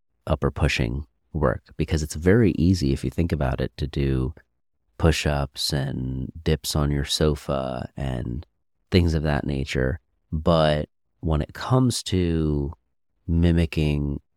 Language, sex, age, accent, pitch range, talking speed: English, male, 30-49, American, 70-85 Hz, 130 wpm